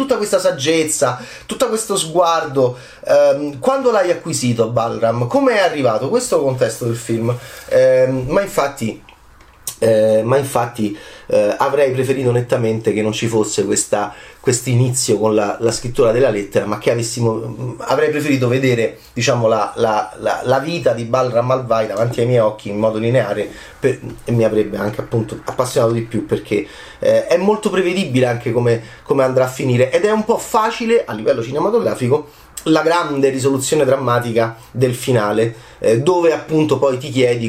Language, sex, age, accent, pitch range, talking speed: Italian, male, 30-49, native, 115-165 Hz, 165 wpm